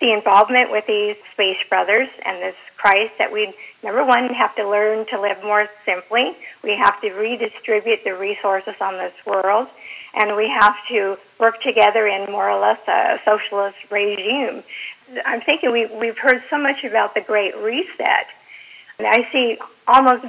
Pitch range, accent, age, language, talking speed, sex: 210-250 Hz, American, 50-69, English, 165 wpm, female